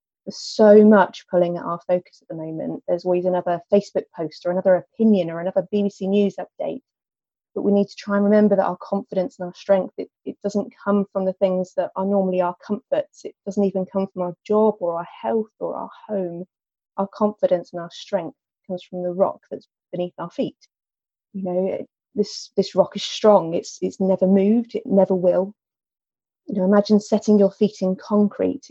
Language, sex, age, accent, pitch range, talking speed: English, female, 30-49, British, 180-210 Hz, 200 wpm